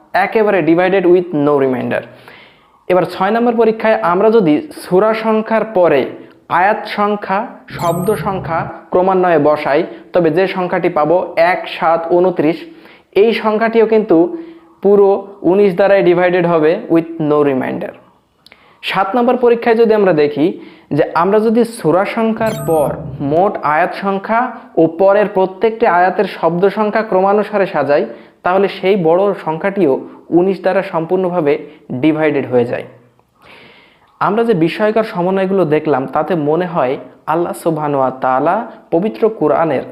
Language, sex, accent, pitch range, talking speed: Bengali, male, native, 165-215 Hz, 85 wpm